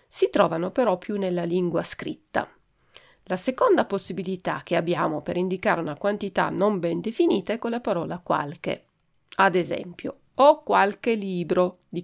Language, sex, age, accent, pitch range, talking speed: Italian, female, 40-59, native, 175-240 Hz, 150 wpm